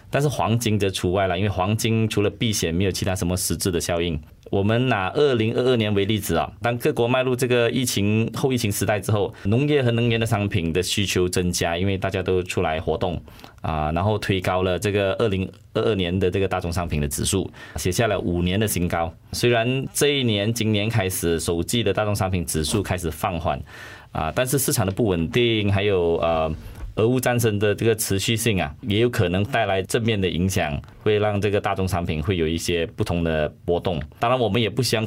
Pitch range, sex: 90-115 Hz, male